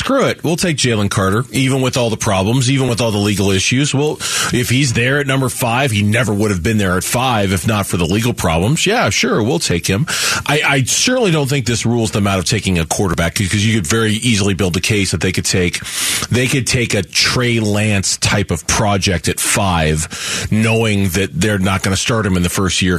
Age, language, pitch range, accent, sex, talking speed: 40-59, English, 100-125 Hz, American, male, 240 wpm